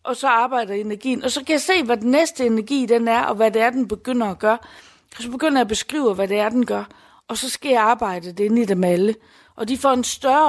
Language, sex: Danish, female